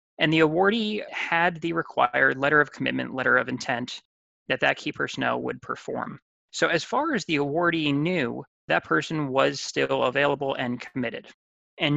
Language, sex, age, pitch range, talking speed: English, male, 20-39, 130-165 Hz, 165 wpm